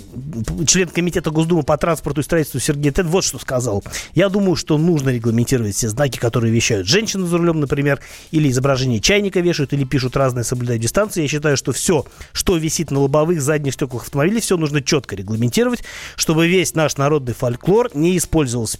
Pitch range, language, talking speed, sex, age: 130-175 Hz, Russian, 180 wpm, male, 30-49